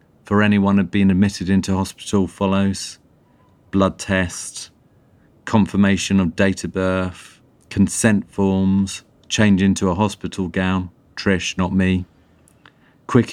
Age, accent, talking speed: 40-59, British, 115 wpm